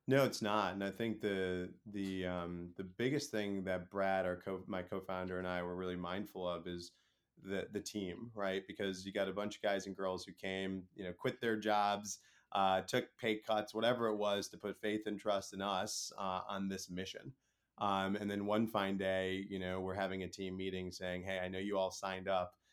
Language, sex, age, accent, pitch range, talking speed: English, male, 30-49, American, 95-110 Hz, 220 wpm